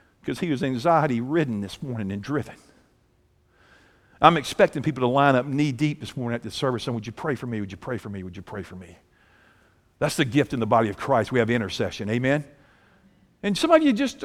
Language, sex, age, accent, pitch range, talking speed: English, male, 50-69, American, 125-205 Hz, 230 wpm